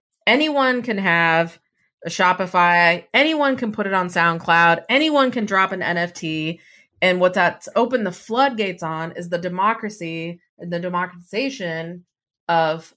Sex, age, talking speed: female, 30-49, 140 wpm